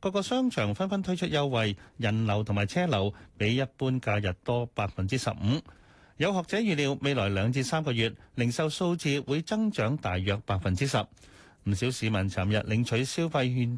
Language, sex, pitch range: Chinese, male, 110-145 Hz